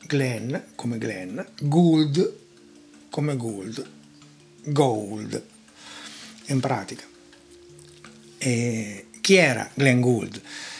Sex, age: male, 60-79